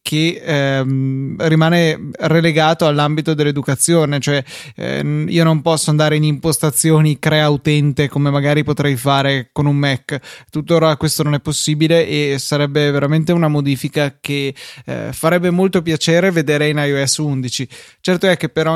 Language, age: Italian, 20-39